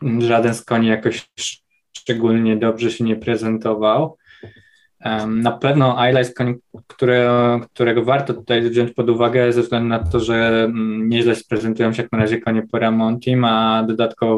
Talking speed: 160 wpm